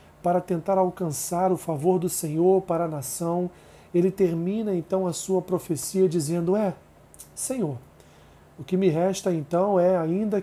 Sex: male